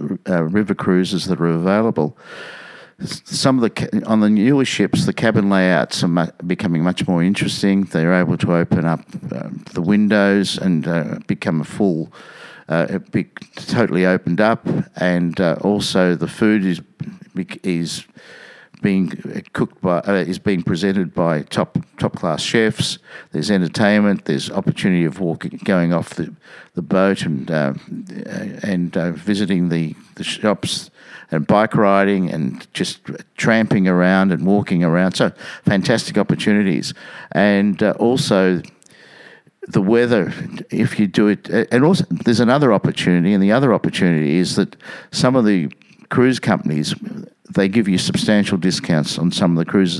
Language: English